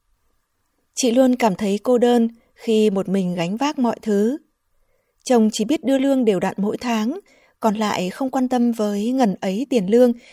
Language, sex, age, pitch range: Vietnamese, female, 20-39, 195-240 Hz